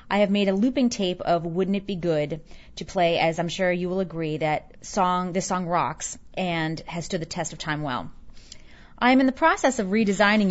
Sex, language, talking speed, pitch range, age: female, English, 225 wpm, 165-225 Hz, 30-49